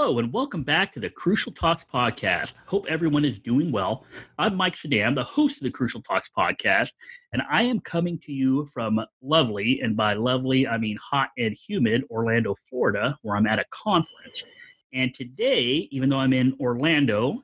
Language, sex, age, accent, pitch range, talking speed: English, male, 30-49, American, 120-160 Hz, 185 wpm